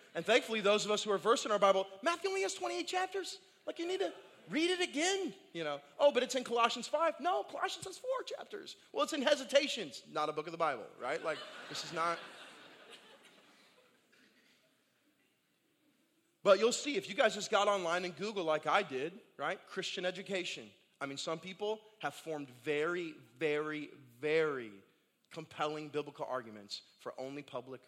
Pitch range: 135-205 Hz